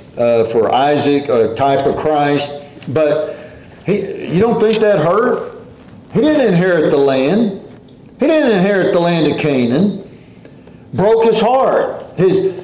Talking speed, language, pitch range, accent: 140 wpm, English, 150-225 Hz, American